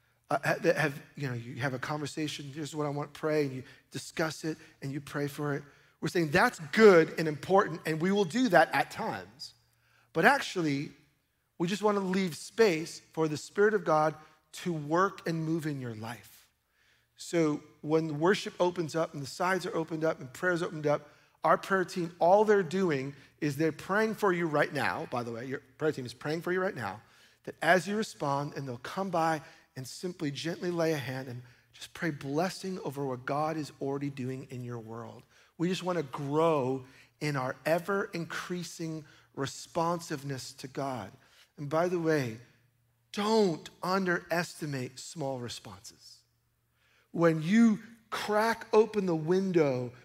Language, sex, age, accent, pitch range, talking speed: English, male, 40-59, American, 135-175 Hz, 175 wpm